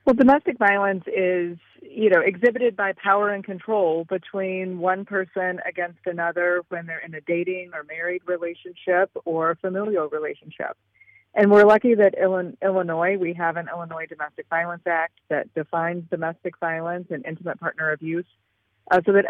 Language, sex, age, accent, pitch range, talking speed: English, female, 30-49, American, 160-190 Hz, 155 wpm